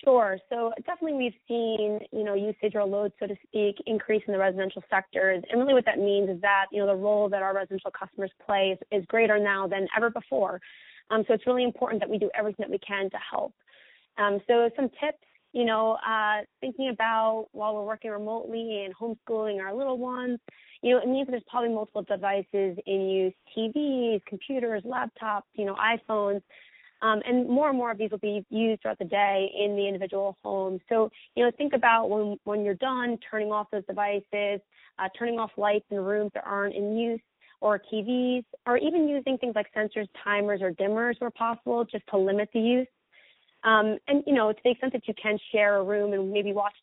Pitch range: 200-235 Hz